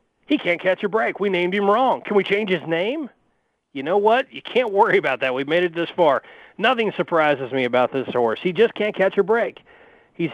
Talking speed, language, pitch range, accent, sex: 230 wpm, English, 160-220 Hz, American, male